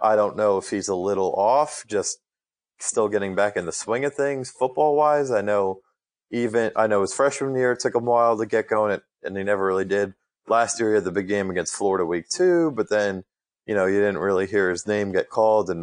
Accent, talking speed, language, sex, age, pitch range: American, 240 wpm, English, male, 30-49, 95-110 Hz